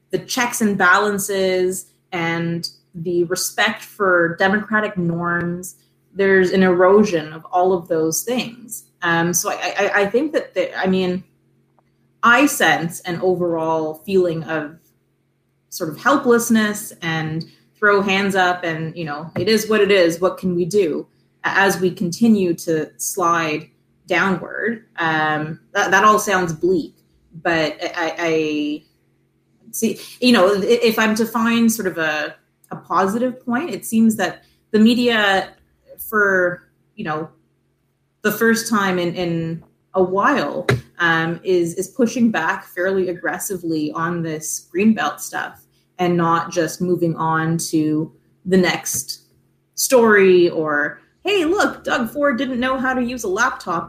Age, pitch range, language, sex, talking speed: 30-49, 165-215 Hz, English, female, 145 wpm